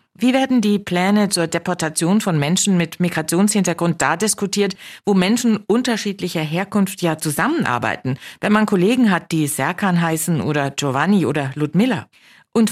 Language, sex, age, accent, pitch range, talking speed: German, female, 50-69, German, 145-200 Hz, 140 wpm